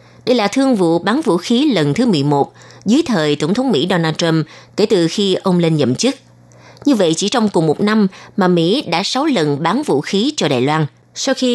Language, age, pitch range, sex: Vietnamese, 20-39, 160-235 Hz, female